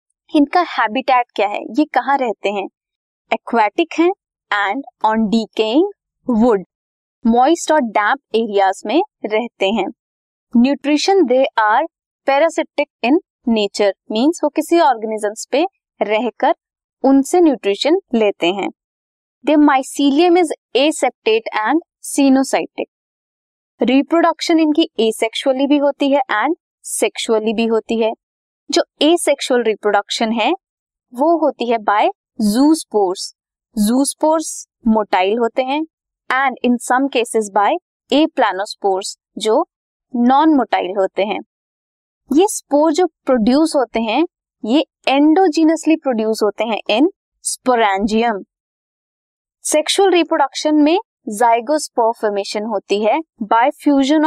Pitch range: 220-315 Hz